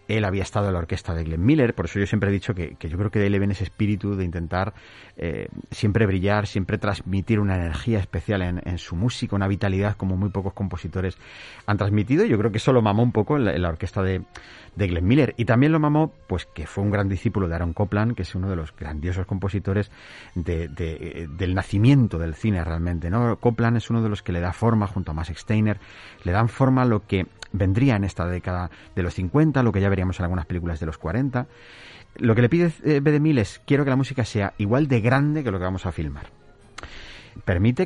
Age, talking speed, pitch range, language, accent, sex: 40-59, 240 wpm, 95-120 Hz, Spanish, Spanish, male